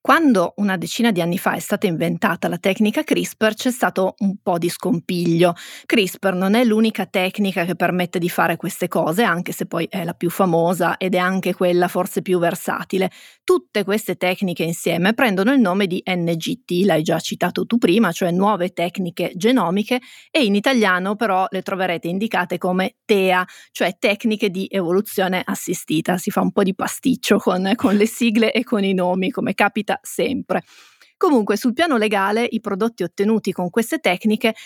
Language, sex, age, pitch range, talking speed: Italian, female, 30-49, 180-220 Hz, 175 wpm